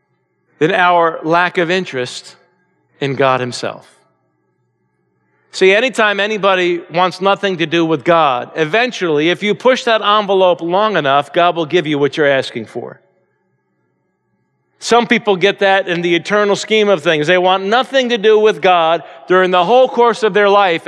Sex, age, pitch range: male, 50-69, 150-200 Hz